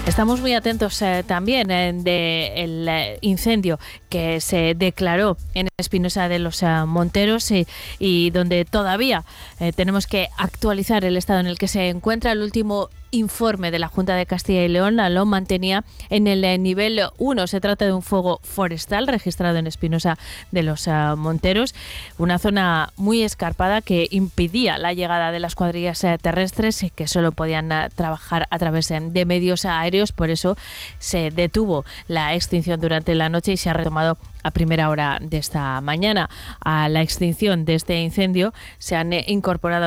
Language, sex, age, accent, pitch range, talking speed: Spanish, female, 20-39, Spanish, 165-195 Hz, 170 wpm